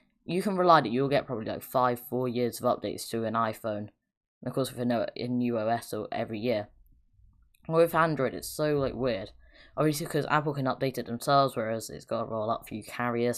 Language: English